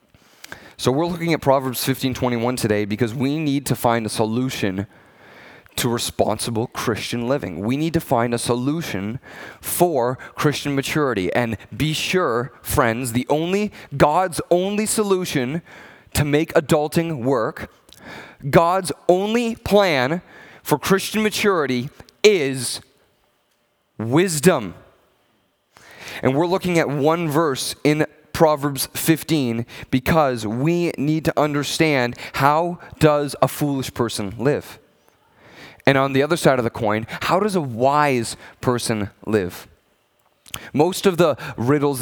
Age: 30-49